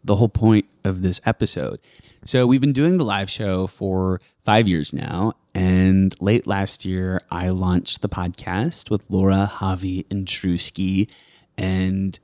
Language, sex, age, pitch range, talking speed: English, male, 20-39, 90-105 Hz, 150 wpm